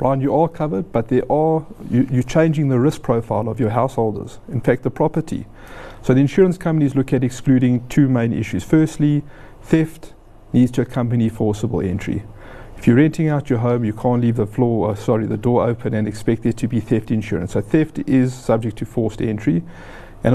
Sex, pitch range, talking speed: male, 110-145 Hz, 200 wpm